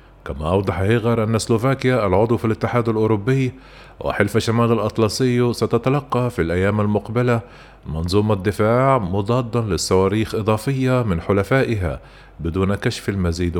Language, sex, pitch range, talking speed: Arabic, male, 100-115 Hz, 115 wpm